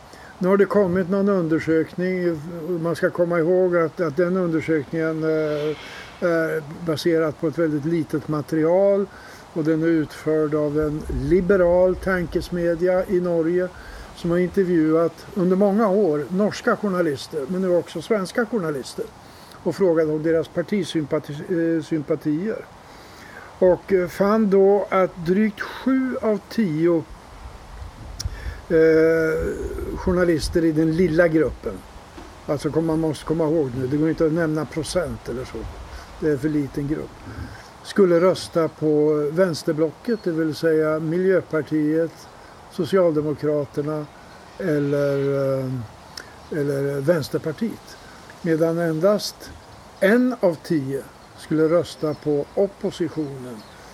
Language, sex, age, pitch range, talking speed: Swedish, male, 60-79, 150-180 Hz, 115 wpm